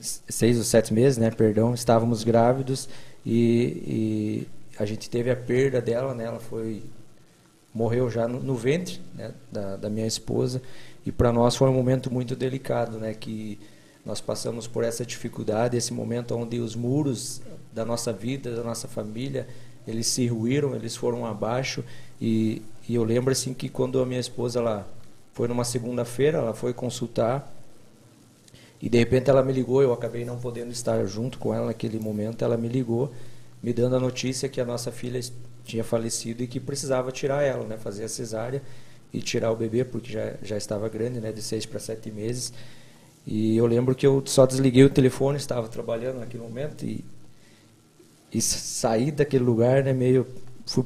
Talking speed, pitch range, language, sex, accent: 180 wpm, 115-130 Hz, Portuguese, male, Brazilian